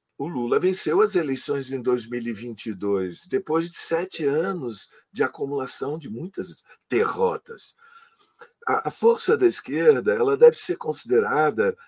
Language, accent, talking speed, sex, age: Portuguese, Brazilian, 120 wpm, male, 50-69